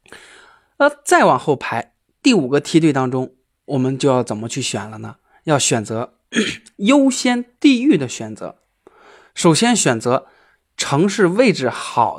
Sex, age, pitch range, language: male, 20-39, 125-200 Hz, Chinese